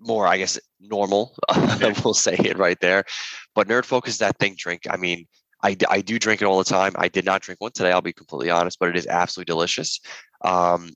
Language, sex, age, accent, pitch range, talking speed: English, male, 20-39, American, 90-105 Hz, 225 wpm